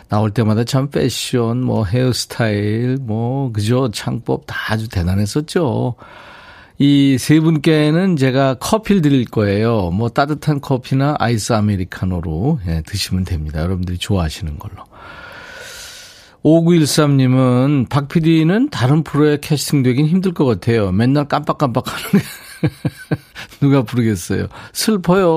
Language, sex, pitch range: Korean, male, 105-145 Hz